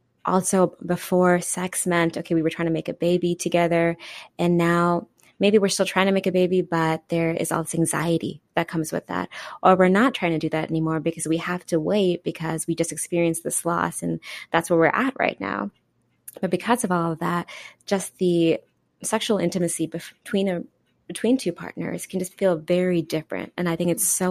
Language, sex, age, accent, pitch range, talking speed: English, female, 20-39, American, 165-190 Hz, 205 wpm